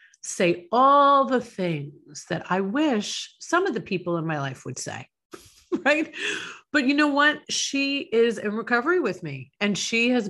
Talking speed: 175 wpm